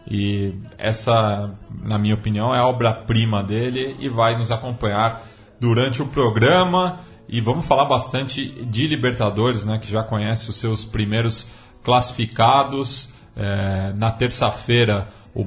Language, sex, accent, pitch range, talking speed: Portuguese, male, Brazilian, 105-120 Hz, 125 wpm